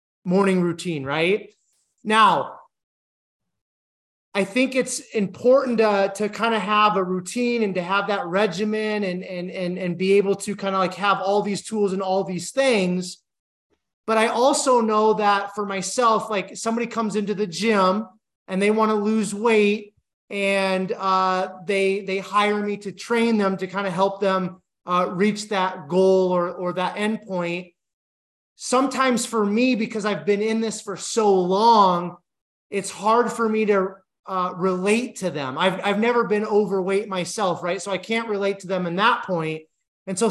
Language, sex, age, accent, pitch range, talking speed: English, male, 30-49, American, 190-220 Hz, 175 wpm